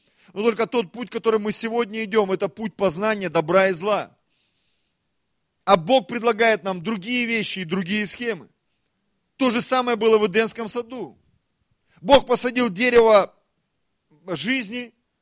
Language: Russian